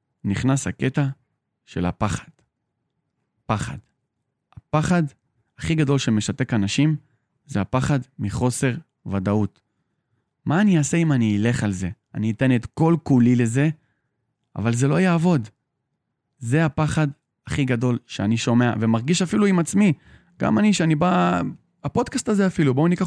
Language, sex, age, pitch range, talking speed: Hebrew, male, 30-49, 115-160 Hz, 130 wpm